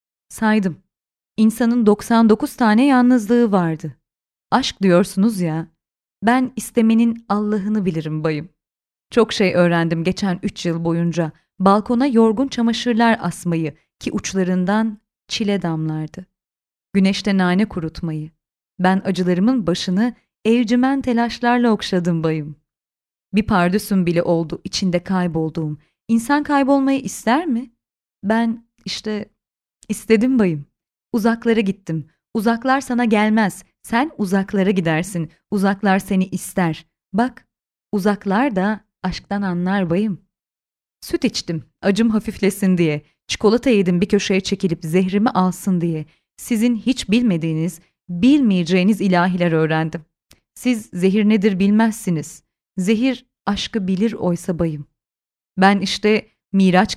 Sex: female